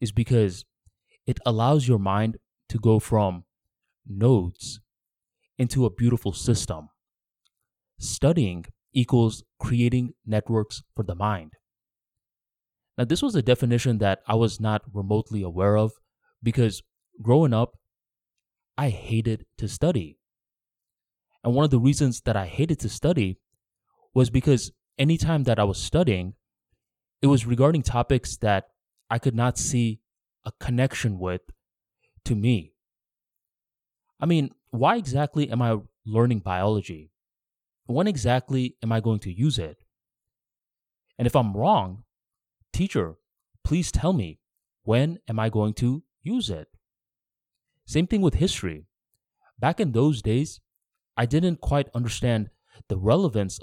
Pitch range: 105-130 Hz